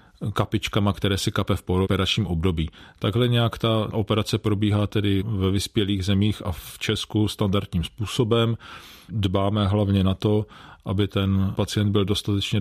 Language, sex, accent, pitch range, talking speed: Czech, male, native, 95-110 Hz, 145 wpm